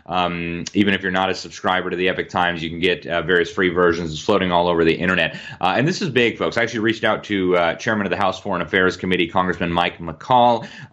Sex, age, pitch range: male, 30-49, 90-110 Hz